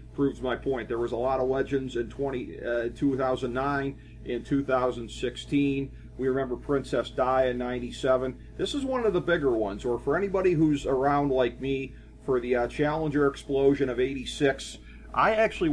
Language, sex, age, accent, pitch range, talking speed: English, male, 40-59, American, 125-150 Hz, 185 wpm